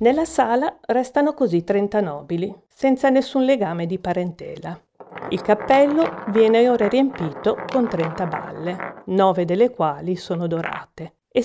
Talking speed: 130 wpm